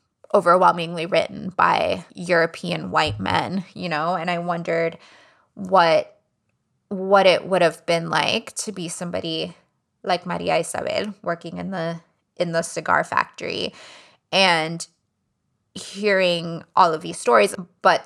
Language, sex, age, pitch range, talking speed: English, female, 20-39, 165-200 Hz, 125 wpm